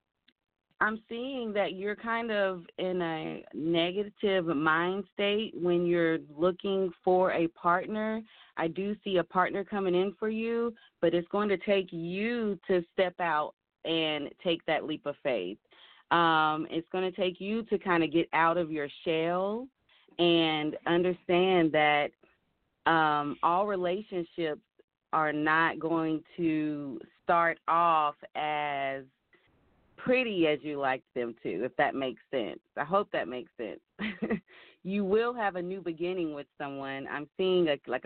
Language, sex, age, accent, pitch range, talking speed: English, female, 30-49, American, 160-195 Hz, 150 wpm